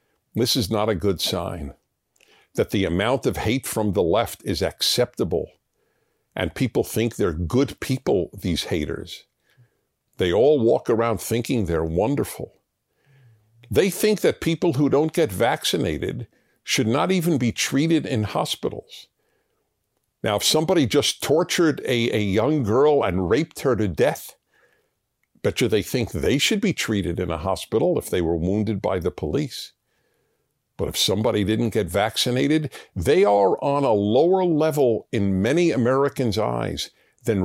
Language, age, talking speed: English, 60-79, 150 wpm